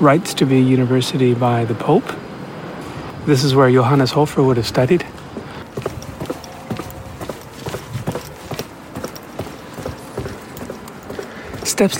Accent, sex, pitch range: American, male, 125-155 Hz